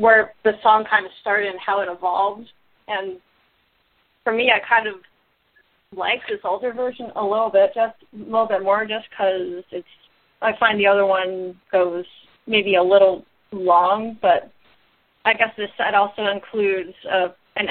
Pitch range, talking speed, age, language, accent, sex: 190-225 Hz, 165 wpm, 30-49, English, American, female